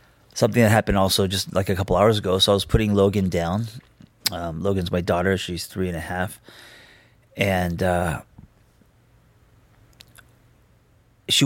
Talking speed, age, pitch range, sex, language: 145 wpm, 30-49, 95-115 Hz, male, English